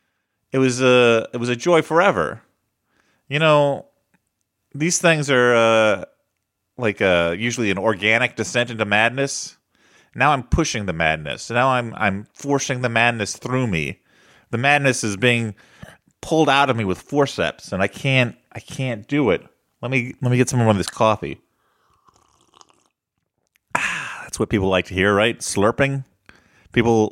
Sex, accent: male, American